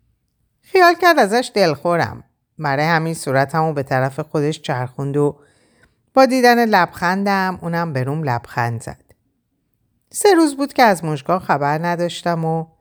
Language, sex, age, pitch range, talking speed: Persian, female, 50-69, 135-190 Hz, 135 wpm